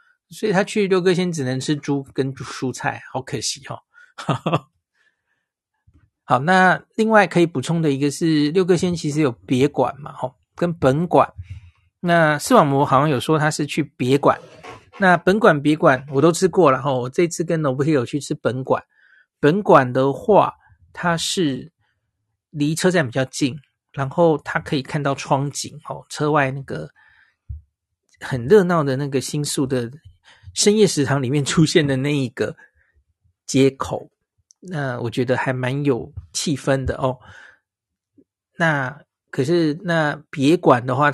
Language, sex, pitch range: Chinese, male, 130-160 Hz